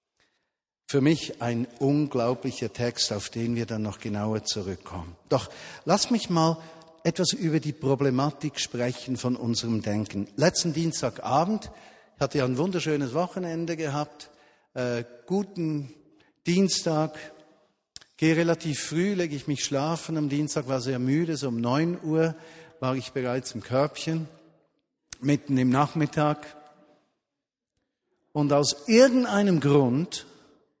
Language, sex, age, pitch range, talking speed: German, male, 50-69, 125-160 Hz, 125 wpm